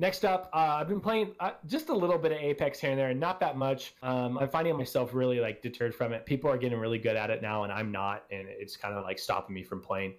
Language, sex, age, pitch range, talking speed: English, male, 20-39, 125-165 Hz, 290 wpm